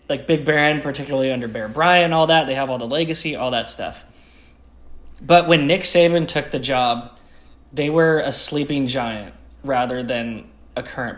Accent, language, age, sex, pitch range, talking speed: American, English, 10-29, male, 110-150 Hz, 175 wpm